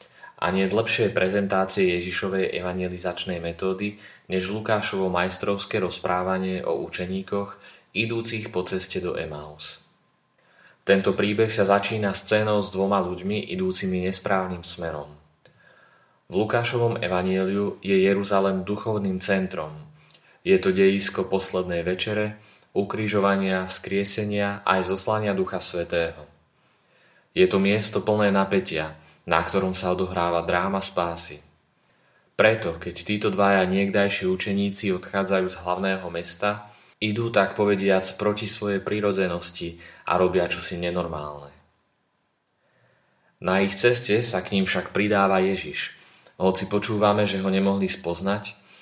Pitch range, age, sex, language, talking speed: 90-105 Hz, 30-49, male, Slovak, 115 wpm